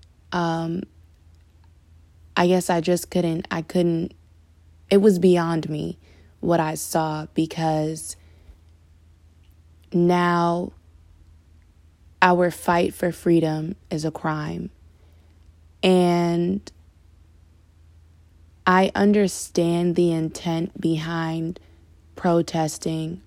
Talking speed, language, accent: 80 wpm, English, American